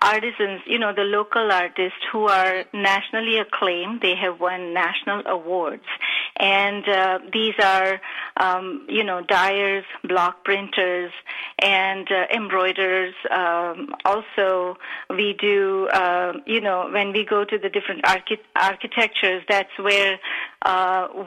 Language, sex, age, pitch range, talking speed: English, female, 30-49, 185-215 Hz, 125 wpm